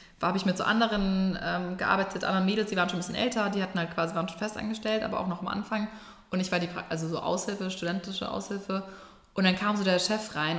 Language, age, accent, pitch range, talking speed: German, 20-39, German, 170-200 Hz, 245 wpm